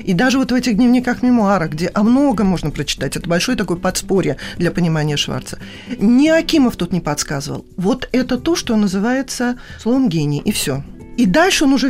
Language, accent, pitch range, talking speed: Russian, native, 180-260 Hz, 185 wpm